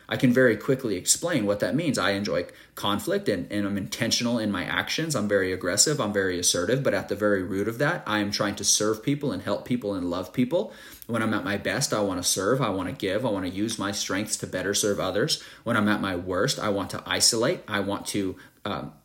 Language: English